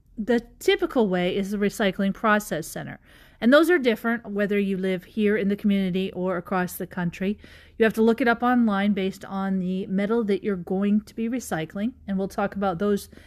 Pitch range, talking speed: 195-235 Hz, 205 wpm